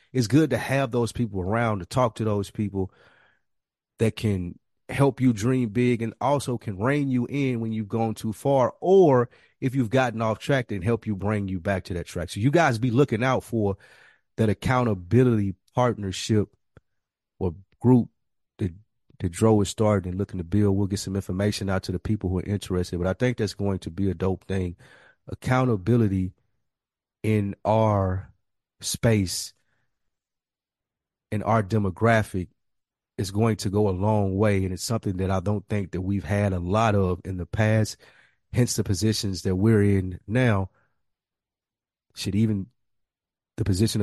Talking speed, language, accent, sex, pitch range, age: 175 wpm, English, American, male, 100-120 Hz, 30-49